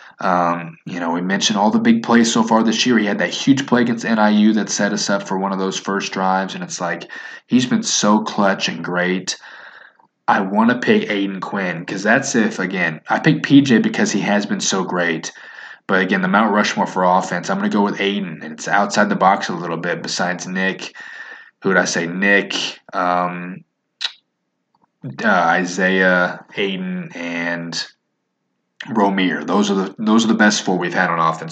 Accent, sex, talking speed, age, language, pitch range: American, male, 200 wpm, 20-39, English, 90-105 Hz